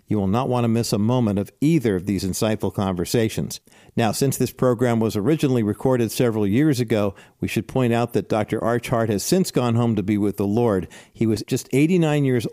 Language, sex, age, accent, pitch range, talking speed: English, male, 50-69, American, 110-140 Hz, 215 wpm